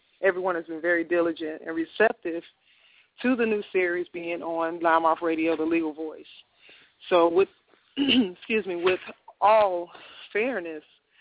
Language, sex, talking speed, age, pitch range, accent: English, female, 140 wpm, 30-49, 160-185 Hz, American